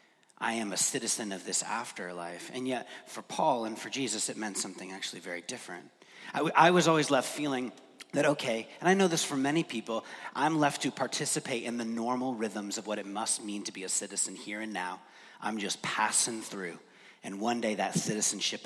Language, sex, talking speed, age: English, male, 205 wpm, 30-49